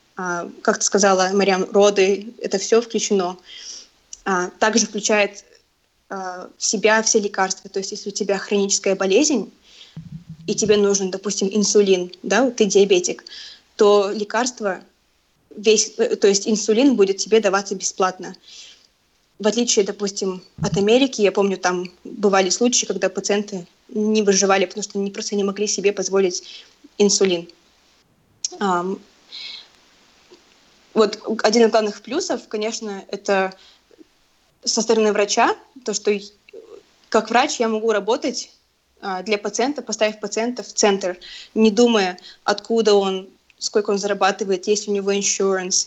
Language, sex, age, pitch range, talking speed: Russian, female, 20-39, 195-220 Hz, 125 wpm